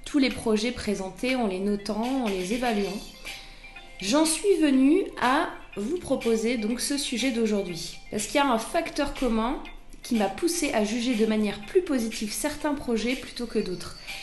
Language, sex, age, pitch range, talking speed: French, female, 20-39, 200-260 Hz, 175 wpm